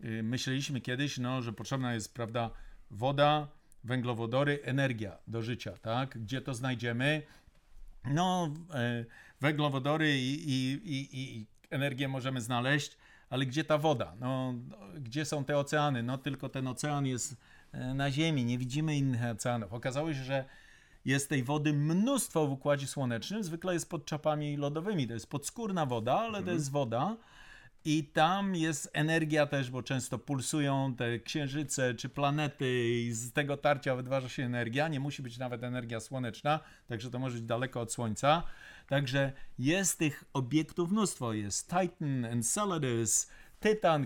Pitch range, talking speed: 125-150 Hz, 150 wpm